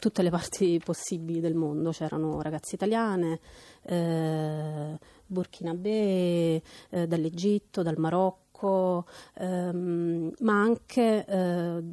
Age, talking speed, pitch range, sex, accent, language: 30-49, 100 wpm, 165-190 Hz, female, native, Italian